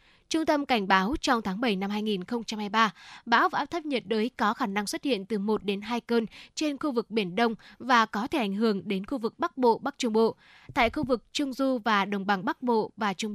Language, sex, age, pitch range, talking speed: Vietnamese, female, 10-29, 210-260 Hz, 245 wpm